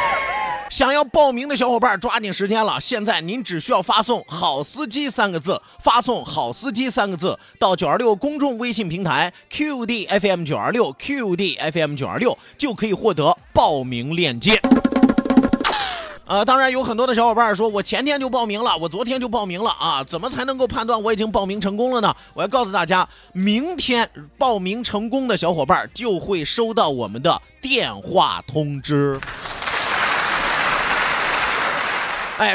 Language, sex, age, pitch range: Chinese, male, 30-49, 190-245 Hz